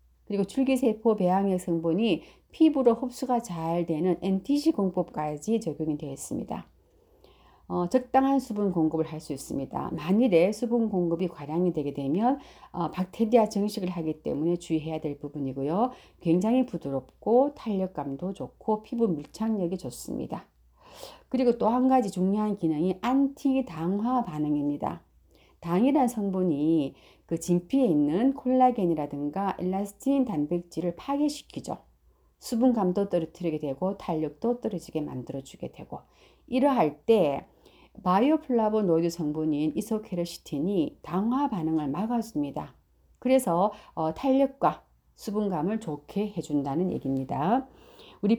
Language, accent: Korean, native